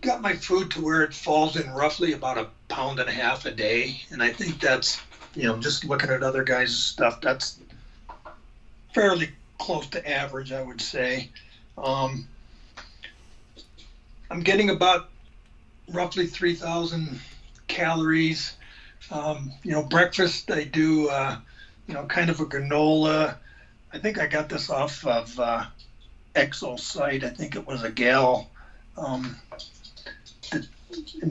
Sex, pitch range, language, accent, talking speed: male, 120-155 Hz, English, American, 140 wpm